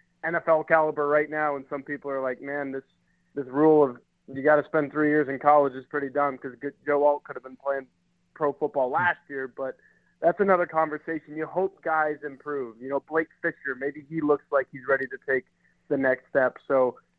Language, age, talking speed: English, 20-39, 210 wpm